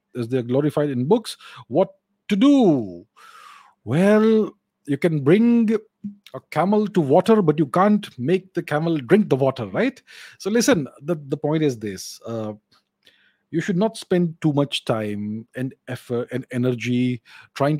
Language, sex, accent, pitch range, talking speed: English, male, Indian, 135-205 Hz, 160 wpm